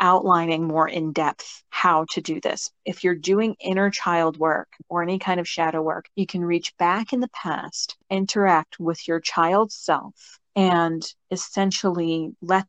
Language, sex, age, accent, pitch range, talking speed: English, female, 40-59, American, 165-200 Hz, 165 wpm